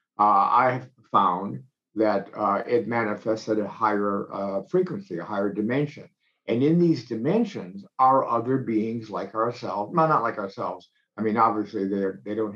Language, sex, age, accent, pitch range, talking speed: English, male, 50-69, American, 105-140 Hz, 165 wpm